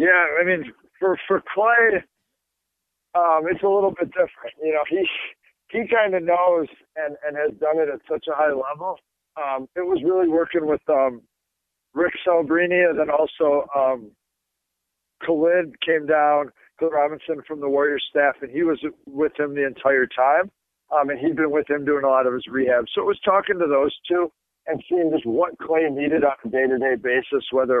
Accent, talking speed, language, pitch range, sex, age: American, 190 wpm, English, 140-170 Hz, male, 50-69